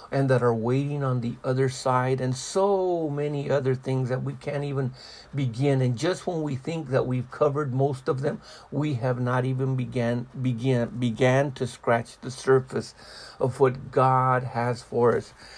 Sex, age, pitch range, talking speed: male, 60-79, 125-150 Hz, 175 wpm